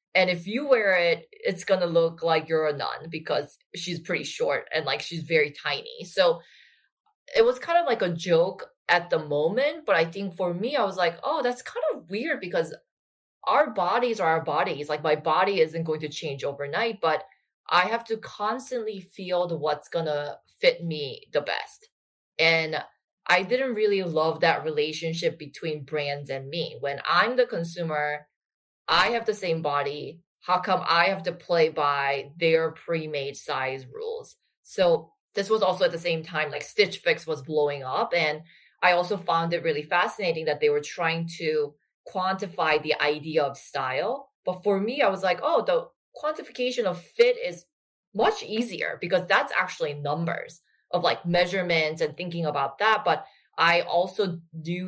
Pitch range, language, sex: 155-220 Hz, English, female